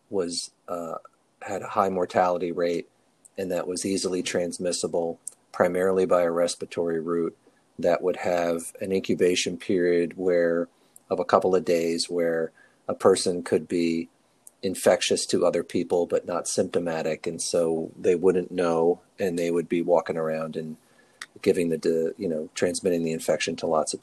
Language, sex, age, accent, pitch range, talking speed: English, male, 40-59, American, 80-90 Hz, 155 wpm